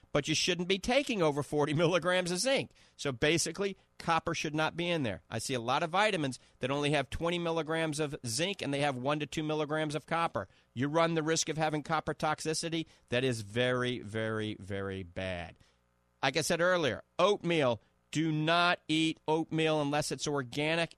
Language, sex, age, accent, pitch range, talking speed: English, male, 40-59, American, 115-160 Hz, 190 wpm